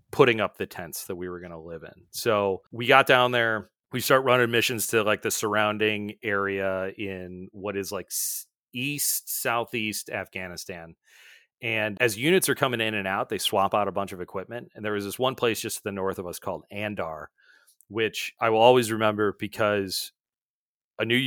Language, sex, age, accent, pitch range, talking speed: English, male, 30-49, American, 100-120 Hz, 195 wpm